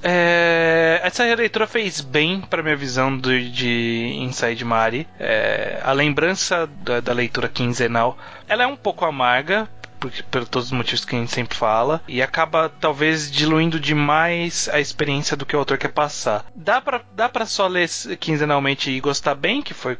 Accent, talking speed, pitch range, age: Brazilian, 180 wpm, 130-170 Hz, 20-39